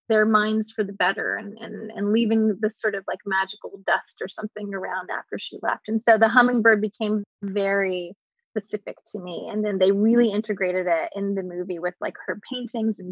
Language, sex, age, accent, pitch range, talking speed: English, female, 20-39, American, 210-250 Hz, 200 wpm